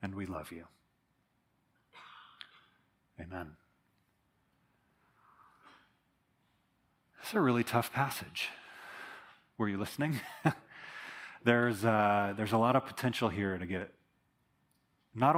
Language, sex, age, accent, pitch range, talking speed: English, male, 30-49, American, 95-120 Hz, 95 wpm